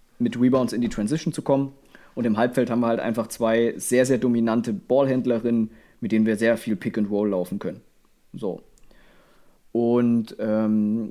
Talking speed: 175 wpm